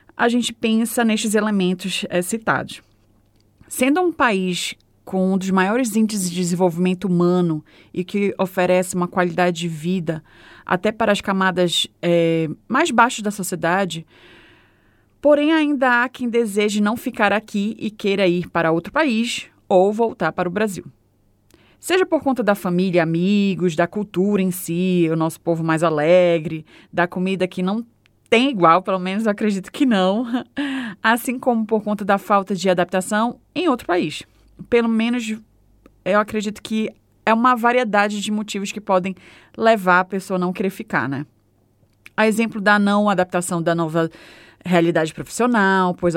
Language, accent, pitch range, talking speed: Portuguese, Brazilian, 170-220 Hz, 160 wpm